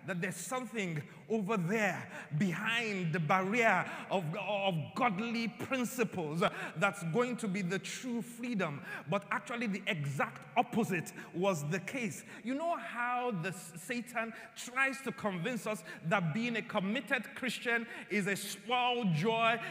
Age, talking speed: 30-49, 135 wpm